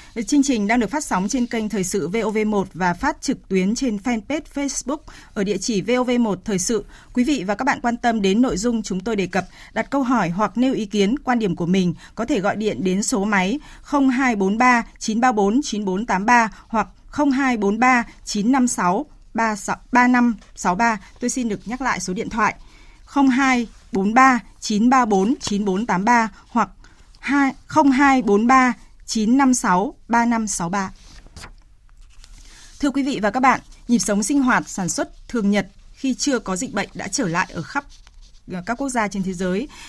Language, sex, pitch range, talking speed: Vietnamese, female, 200-255 Hz, 160 wpm